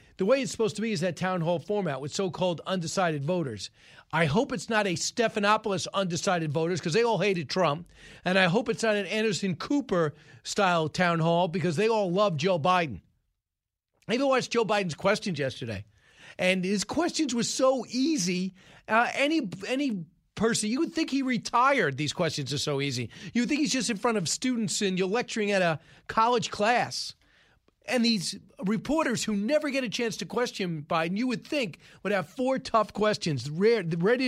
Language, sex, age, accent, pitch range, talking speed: English, male, 40-59, American, 160-215 Hz, 190 wpm